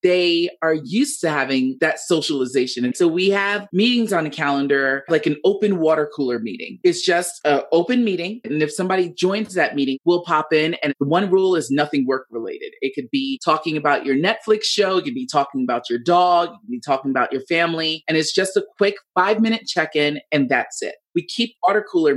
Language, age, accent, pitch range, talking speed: English, 30-49, American, 150-200 Hz, 210 wpm